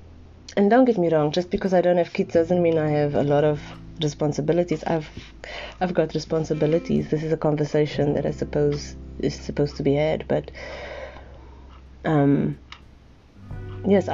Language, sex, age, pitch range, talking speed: English, female, 30-49, 140-175 Hz, 160 wpm